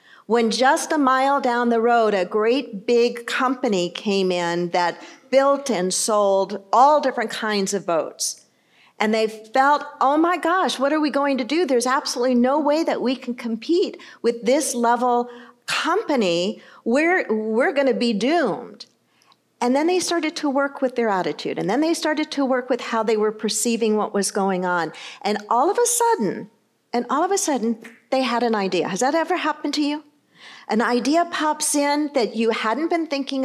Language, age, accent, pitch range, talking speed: English, 50-69, American, 230-305 Hz, 185 wpm